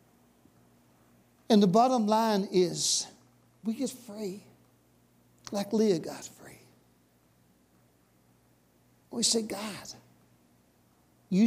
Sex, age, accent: male, 60-79, American